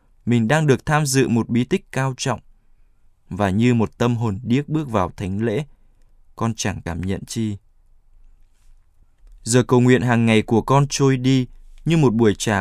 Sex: male